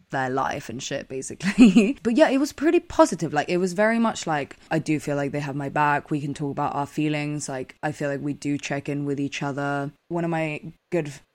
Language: English